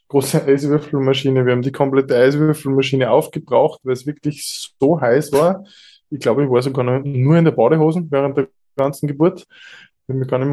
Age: 20-39